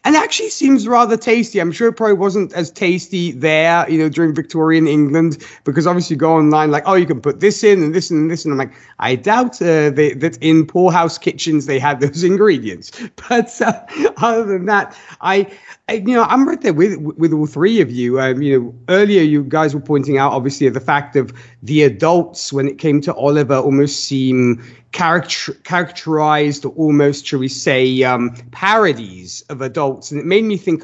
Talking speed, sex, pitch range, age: 200 wpm, male, 145-195 Hz, 30-49